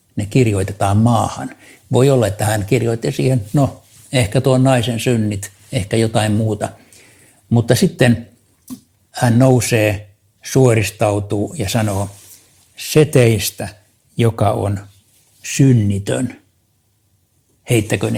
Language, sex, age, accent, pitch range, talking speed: Finnish, male, 60-79, native, 100-115 Hz, 100 wpm